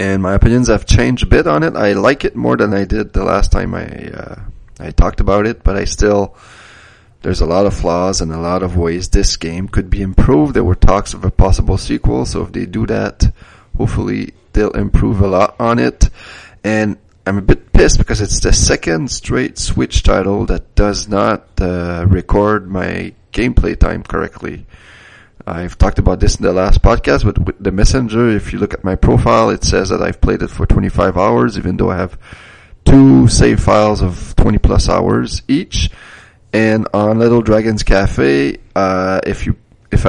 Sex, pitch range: male, 90-105 Hz